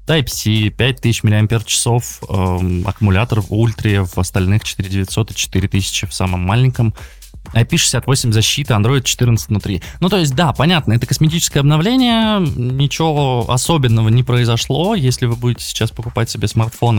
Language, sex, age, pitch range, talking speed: Russian, male, 20-39, 105-130 Hz, 140 wpm